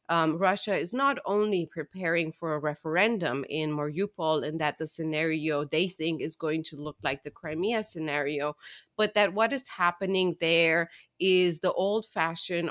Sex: female